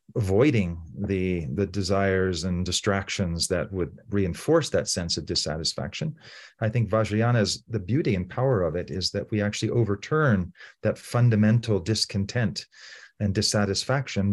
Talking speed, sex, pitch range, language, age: 135 wpm, male, 95-115 Hz, English, 40-59